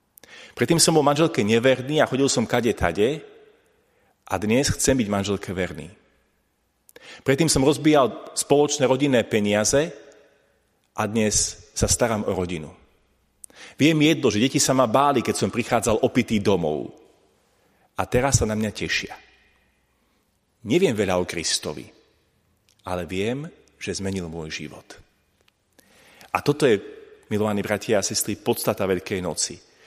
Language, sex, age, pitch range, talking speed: Slovak, male, 40-59, 95-135 Hz, 130 wpm